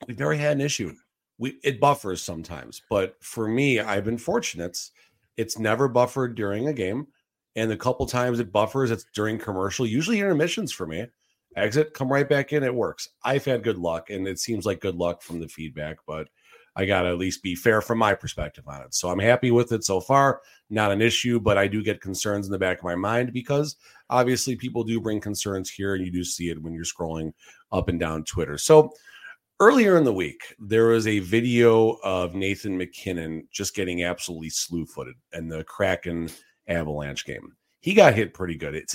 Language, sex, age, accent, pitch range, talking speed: English, male, 40-59, American, 90-125 Hz, 210 wpm